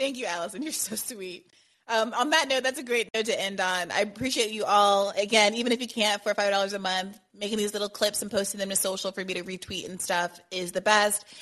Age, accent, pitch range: 30-49, American, 185-215 Hz